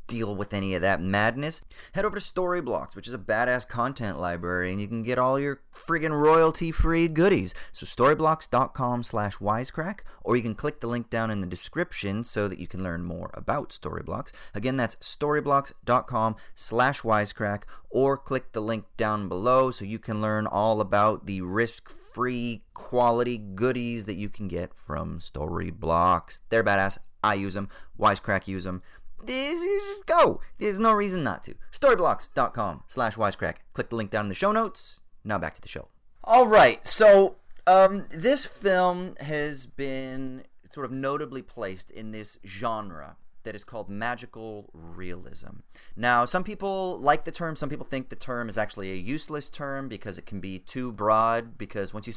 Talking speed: 170 wpm